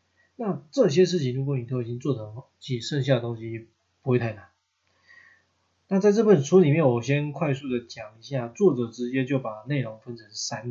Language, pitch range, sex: Chinese, 115-150 Hz, male